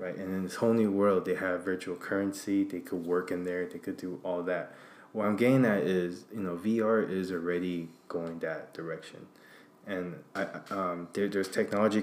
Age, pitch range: 20-39, 90-110 Hz